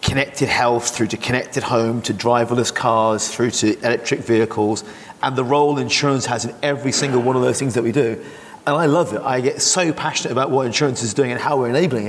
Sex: male